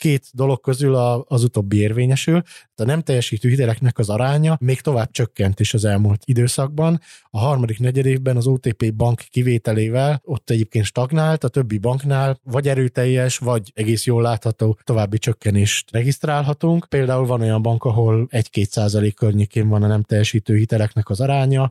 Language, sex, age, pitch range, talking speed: Hungarian, male, 20-39, 115-135 Hz, 160 wpm